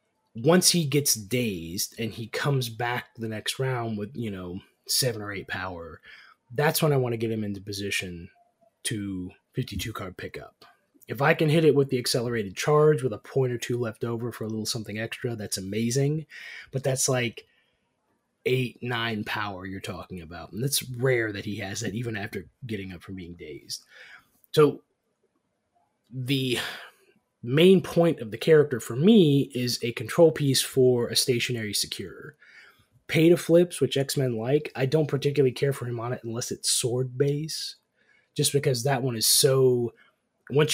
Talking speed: 175 wpm